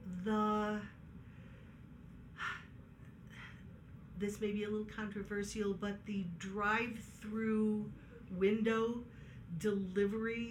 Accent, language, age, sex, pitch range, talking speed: American, English, 50-69, female, 195-220 Hz, 70 wpm